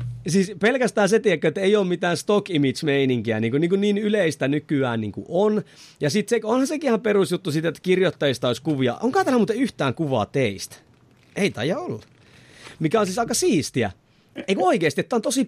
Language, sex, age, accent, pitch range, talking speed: Finnish, male, 30-49, native, 140-210 Hz, 195 wpm